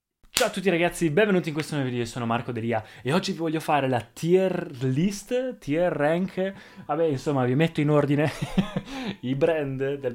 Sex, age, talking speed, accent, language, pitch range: male, 20-39, 190 wpm, native, Italian, 120-150 Hz